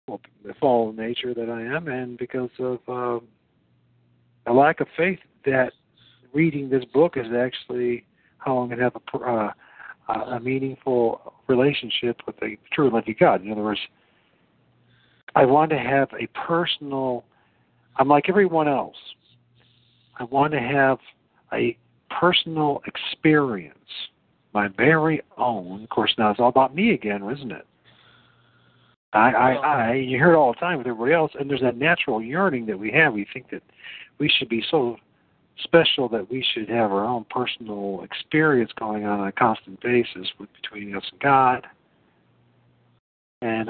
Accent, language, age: American, English, 50-69